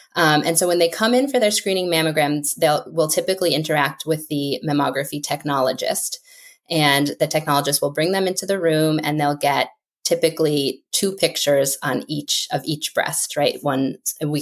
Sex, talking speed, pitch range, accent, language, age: female, 175 wpm, 145-165 Hz, American, English, 20-39